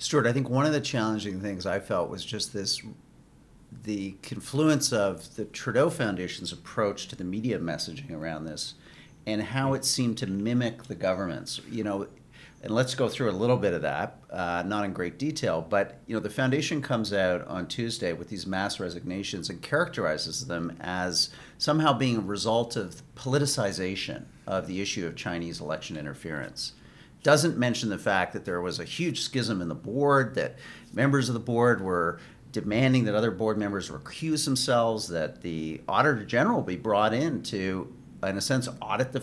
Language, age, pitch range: English, 50-69, 100-140 Hz